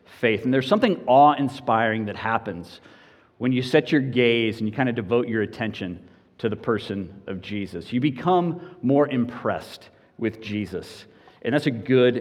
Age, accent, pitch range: 40-59, American, 110-140 Hz